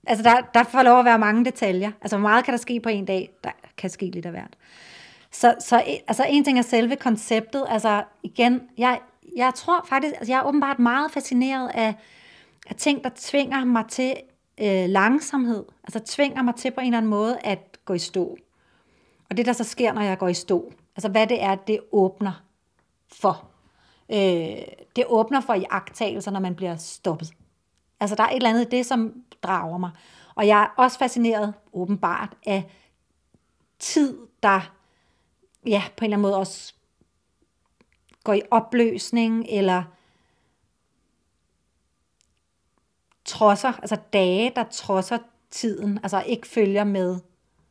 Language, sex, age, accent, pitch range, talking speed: Danish, female, 30-49, native, 185-245 Hz, 165 wpm